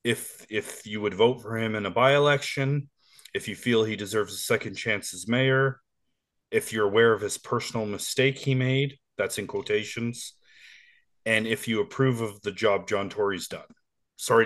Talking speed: 180 wpm